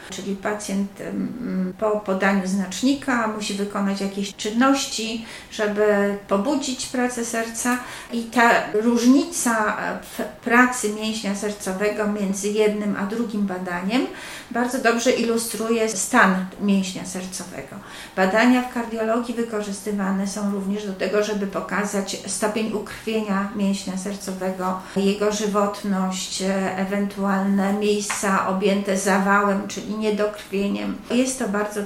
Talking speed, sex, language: 105 wpm, female, Polish